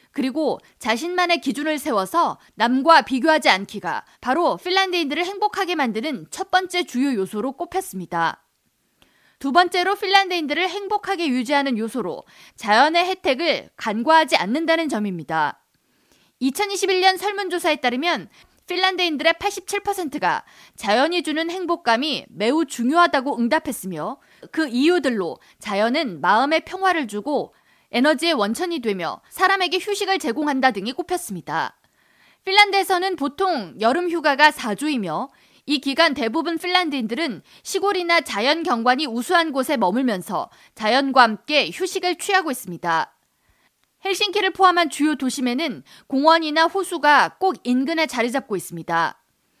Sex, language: female, Korean